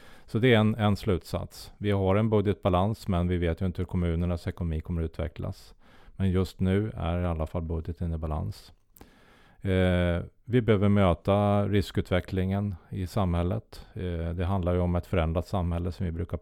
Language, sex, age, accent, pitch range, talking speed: Swedish, male, 30-49, Norwegian, 85-100 Hz, 180 wpm